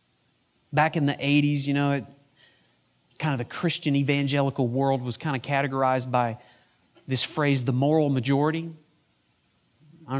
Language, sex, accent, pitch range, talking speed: English, male, American, 130-180 Hz, 140 wpm